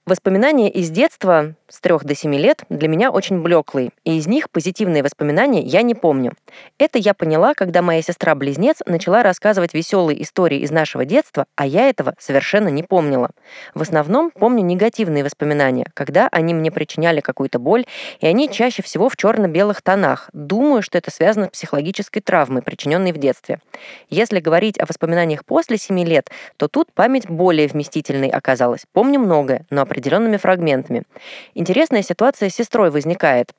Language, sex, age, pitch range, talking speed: Russian, female, 20-39, 150-210 Hz, 165 wpm